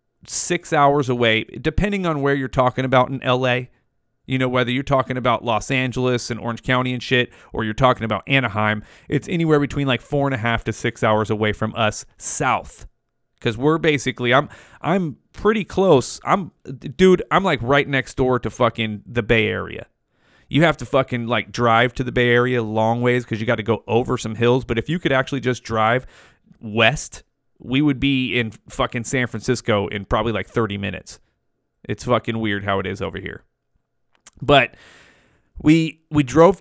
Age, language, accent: 30-49, English, American